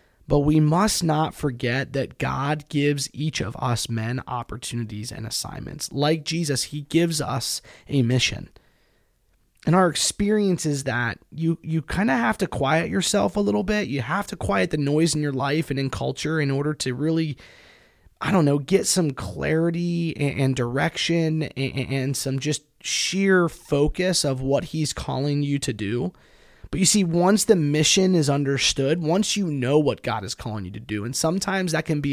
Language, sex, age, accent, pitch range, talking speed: English, male, 20-39, American, 135-170 Hz, 180 wpm